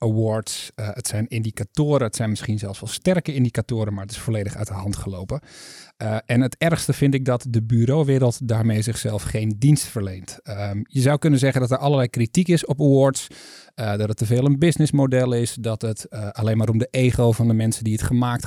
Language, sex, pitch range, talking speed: Dutch, male, 110-135 Hz, 220 wpm